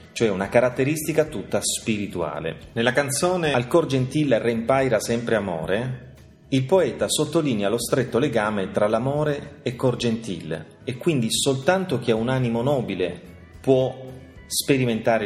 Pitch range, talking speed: 100-130 Hz, 135 wpm